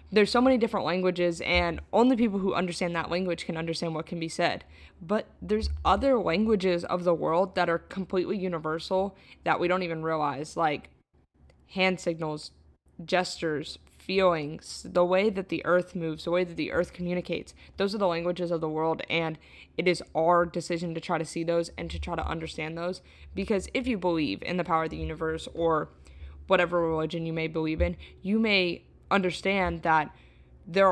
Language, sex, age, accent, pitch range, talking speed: English, female, 20-39, American, 160-185 Hz, 185 wpm